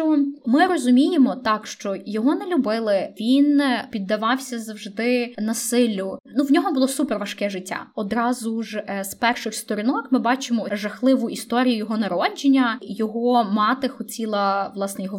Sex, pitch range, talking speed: female, 225-285 Hz, 140 wpm